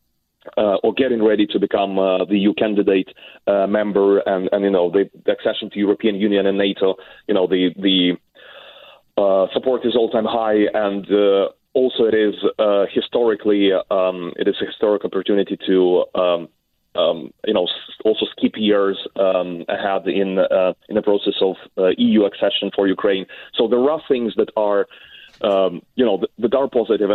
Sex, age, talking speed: male, 30-49, 175 wpm